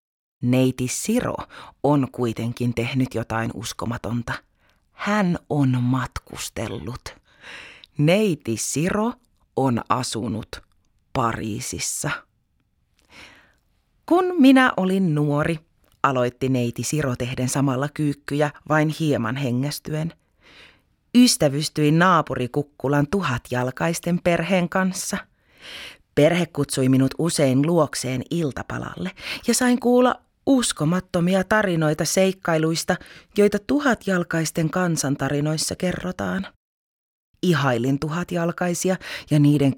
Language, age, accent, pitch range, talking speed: Finnish, 30-49, native, 130-185 Hz, 85 wpm